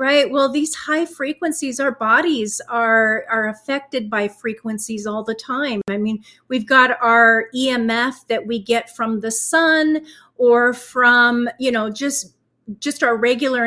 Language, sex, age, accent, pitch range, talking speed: English, female, 40-59, American, 230-290 Hz, 155 wpm